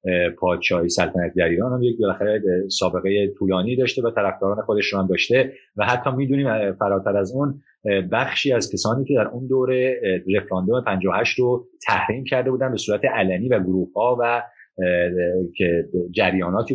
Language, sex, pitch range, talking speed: Persian, male, 95-130 Hz, 150 wpm